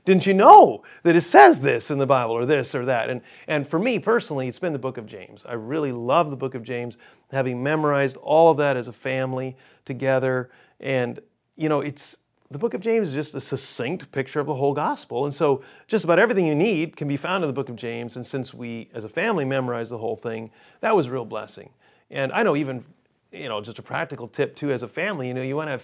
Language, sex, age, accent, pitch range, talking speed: English, male, 40-59, American, 130-170 Hz, 250 wpm